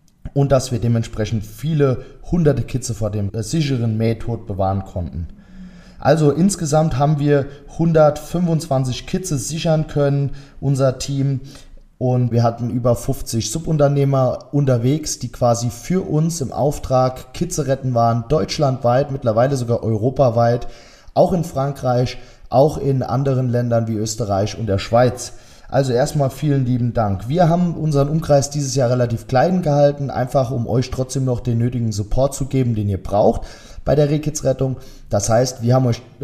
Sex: male